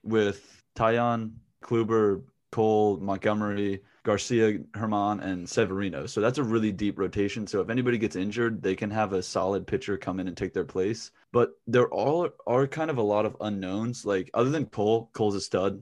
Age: 20-39